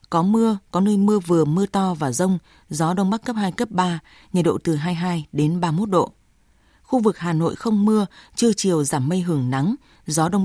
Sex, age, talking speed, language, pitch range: female, 20-39, 220 wpm, Vietnamese, 155-200 Hz